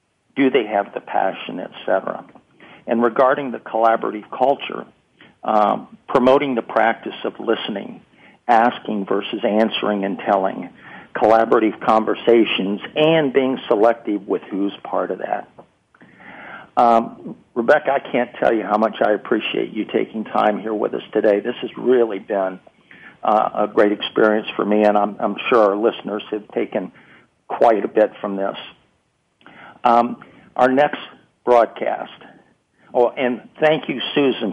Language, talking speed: English, 140 wpm